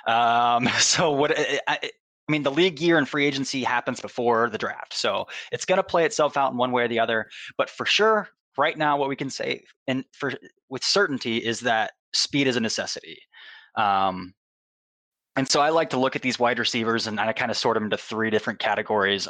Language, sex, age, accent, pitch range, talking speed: English, male, 20-39, American, 115-145 Hz, 210 wpm